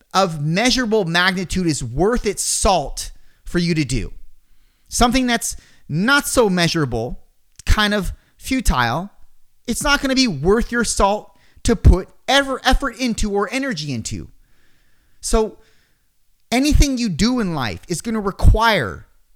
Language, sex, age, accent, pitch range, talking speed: English, male, 30-49, American, 150-220 Hz, 135 wpm